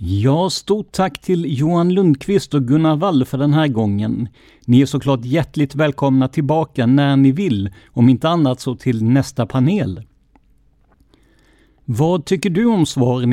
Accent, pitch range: native, 120-160 Hz